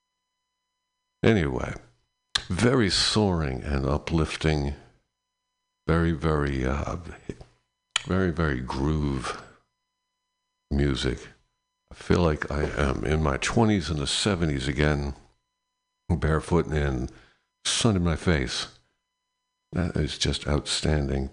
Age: 60-79